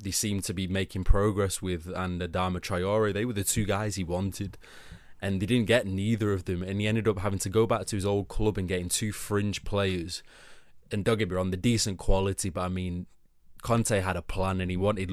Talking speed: 235 wpm